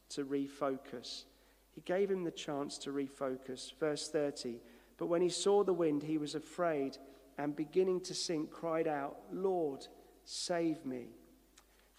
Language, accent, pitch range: English, British, 155-205 Hz